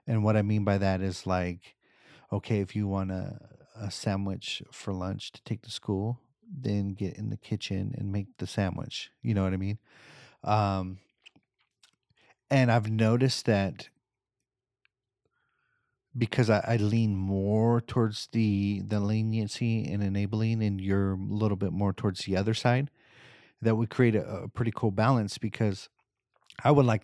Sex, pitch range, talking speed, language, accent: male, 100-130 Hz, 160 wpm, English, American